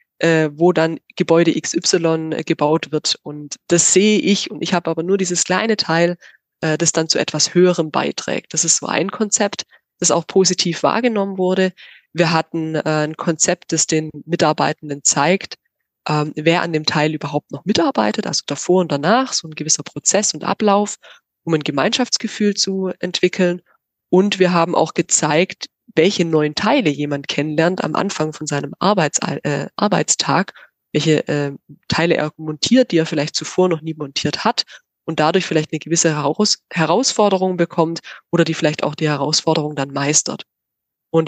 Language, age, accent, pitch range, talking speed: German, 20-39, German, 155-185 Hz, 160 wpm